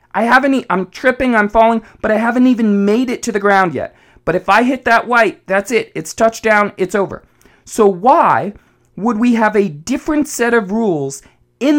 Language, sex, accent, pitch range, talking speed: English, male, American, 155-240 Hz, 200 wpm